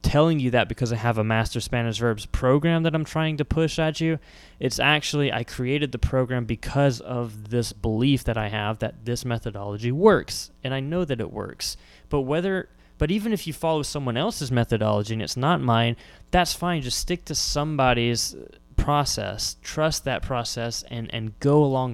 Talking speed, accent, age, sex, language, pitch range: 190 wpm, American, 20-39, male, English, 115-150 Hz